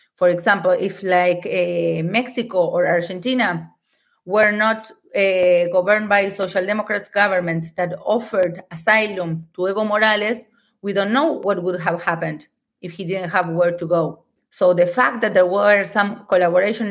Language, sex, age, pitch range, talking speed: German, female, 30-49, 180-210 Hz, 155 wpm